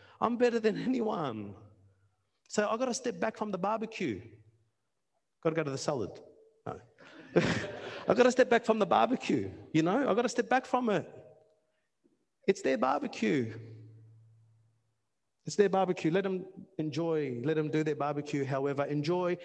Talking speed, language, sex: 165 wpm, English, male